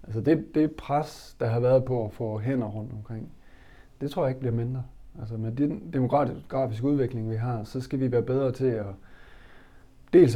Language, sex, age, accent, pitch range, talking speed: Danish, male, 30-49, native, 115-135 Hz, 190 wpm